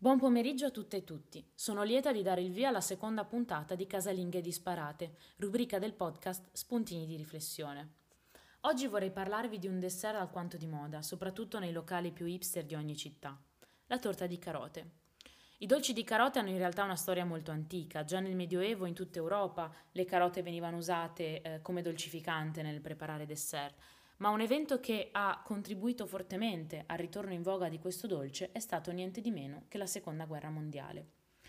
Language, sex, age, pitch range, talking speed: Italian, female, 20-39, 165-205 Hz, 185 wpm